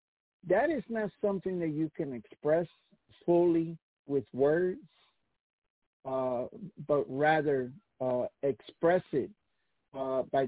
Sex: male